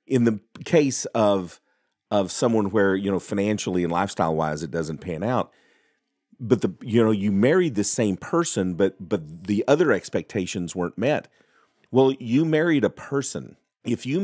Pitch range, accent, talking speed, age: 95-125 Hz, American, 165 wpm, 40-59